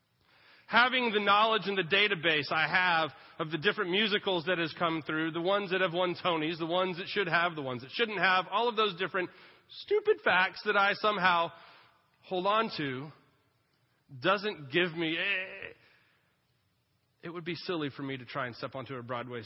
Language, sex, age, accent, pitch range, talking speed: English, male, 30-49, American, 125-175 Hz, 185 wpm